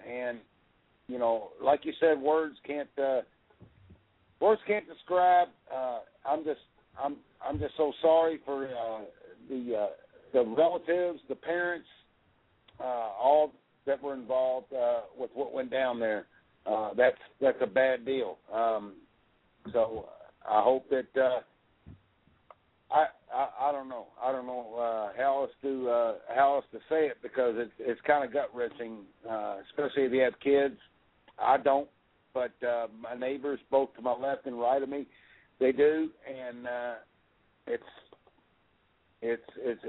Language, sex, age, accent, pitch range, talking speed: English, male, 50-69, American, 120-165 Hz, 155 wpm